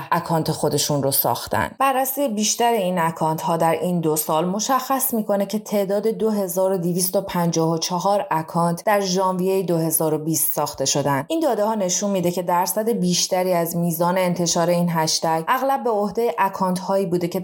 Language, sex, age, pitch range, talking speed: Persian, female, 20-39, 160-190 Hz, 155 wpm